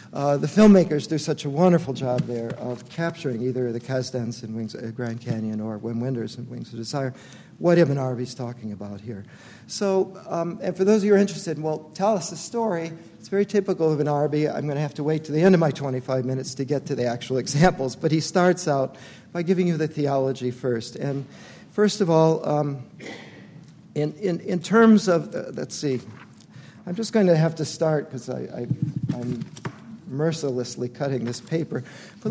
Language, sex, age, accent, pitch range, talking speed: English, male, 50-69, American, 125-170 Hz, 205 wpm